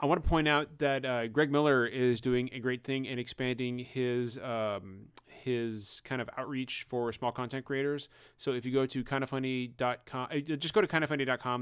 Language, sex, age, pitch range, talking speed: English, male, 30-49, 120-130 Hz, 185 wpm